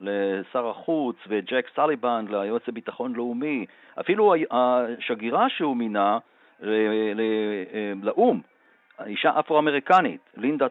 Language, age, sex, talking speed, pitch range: Hebrew, 50-69, male, 95 wpm, 120-160 Hz